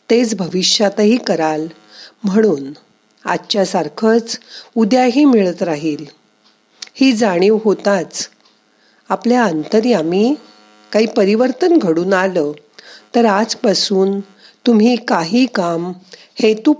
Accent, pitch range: native, 165-230 Hz